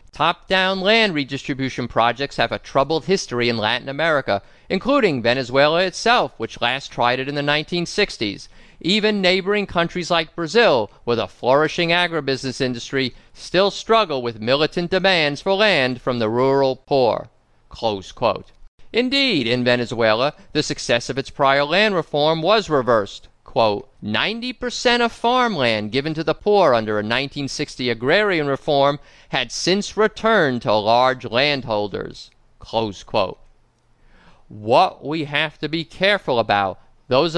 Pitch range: 125-185 Hz